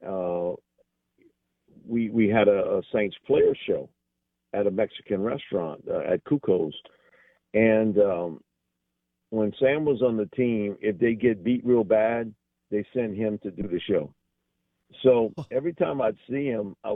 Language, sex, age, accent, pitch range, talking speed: English, male, 50-69, American, 100-140 Hz, 155 wpm